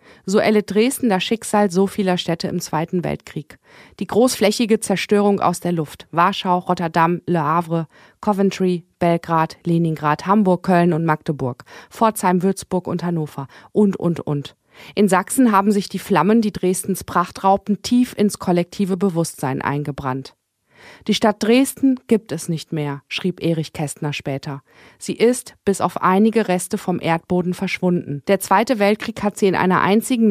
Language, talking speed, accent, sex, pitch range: German, 155 wpm, German, female, 175-210 Hz